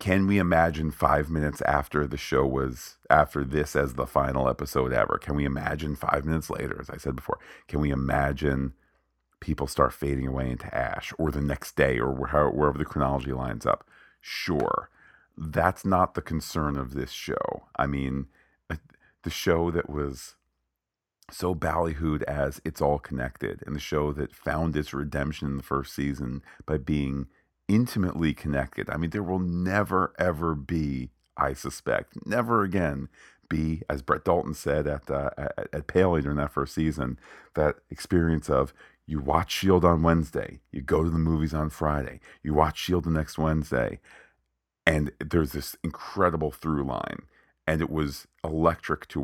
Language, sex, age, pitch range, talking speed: English, male, 40-59, 70-80 Hz, 165 wpm